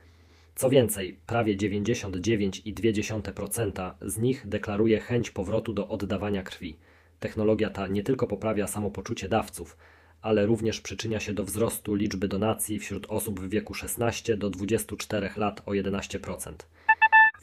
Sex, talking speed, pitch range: male, 125 wpm, 100-110 Hz